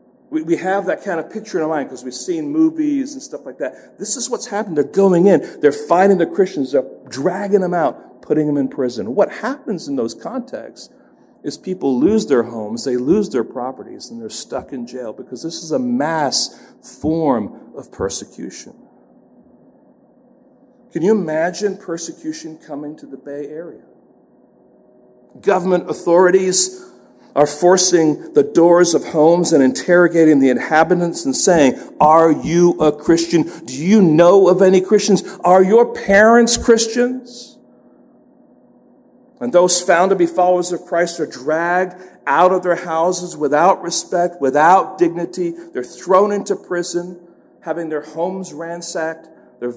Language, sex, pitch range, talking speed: English, male, 155-200 Hz, 155 wpm